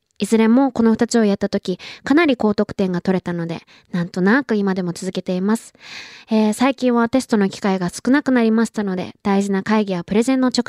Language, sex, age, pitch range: Japanese, female, 20-39, 190-260 Hz